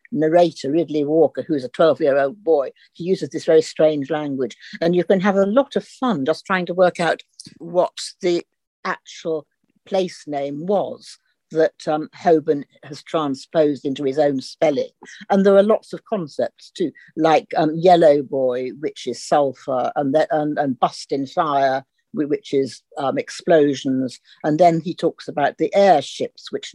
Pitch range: 145-185 Hz